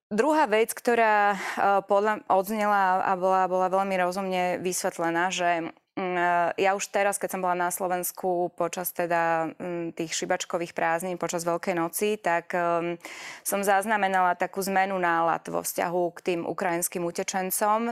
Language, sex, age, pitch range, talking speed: Slovak, female, 20-39, 170-195 Hz, 130 wpm